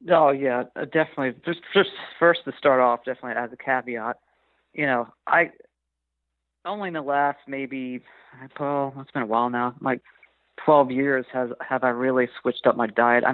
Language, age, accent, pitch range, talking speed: English, 40-59, American, 120-140 Hz, 180 wpm